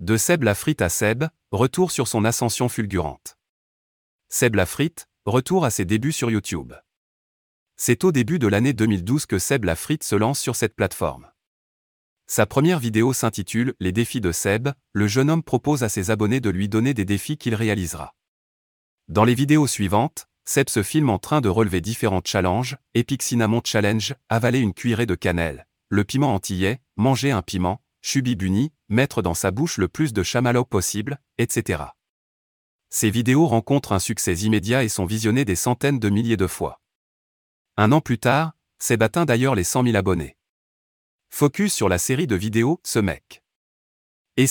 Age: 30-49